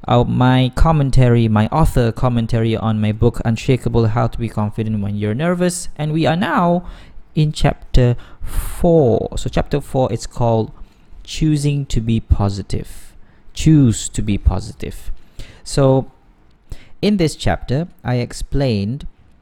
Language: Malay